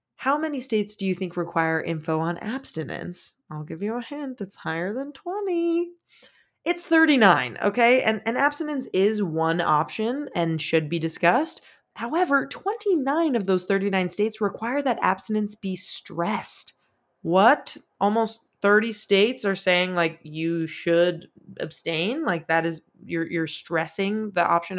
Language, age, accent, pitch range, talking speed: English, 20-39, American, 165-235 Hz, 150 wpm